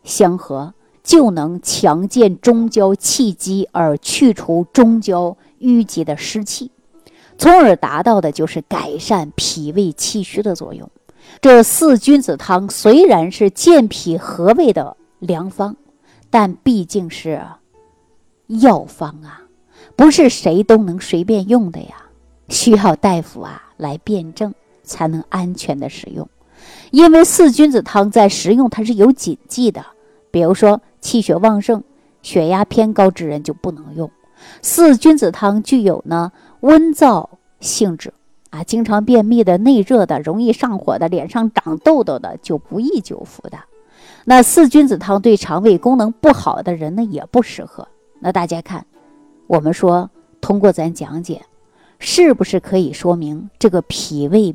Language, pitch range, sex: Chinese, 170-245 Hz, female